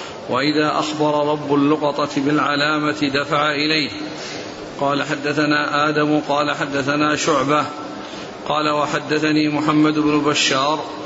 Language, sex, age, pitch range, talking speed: Arabic, male, 50-69, 145-155 Hz, 100 wpm